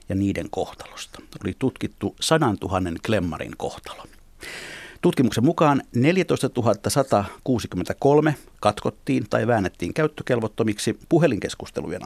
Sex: male